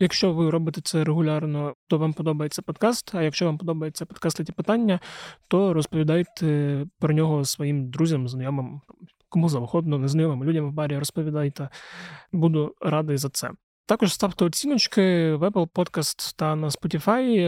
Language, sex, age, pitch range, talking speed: Ukrainian, male, 20-39, 150-165 Hz, 145 wpm